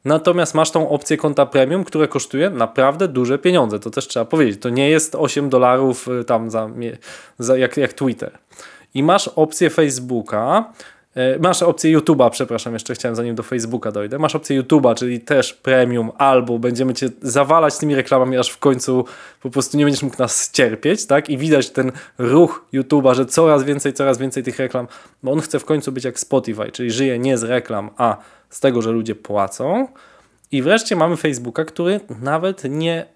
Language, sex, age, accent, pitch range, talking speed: Polish, male, 20-39, native, 120-150 Hz, 185 wpm